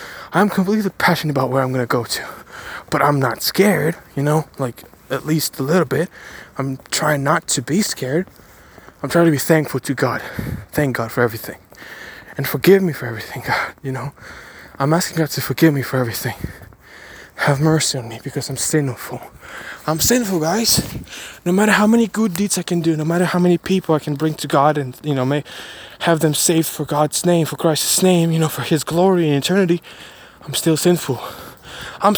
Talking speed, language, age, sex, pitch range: 200 wpm, English, 20-39, male, 125-170 Hz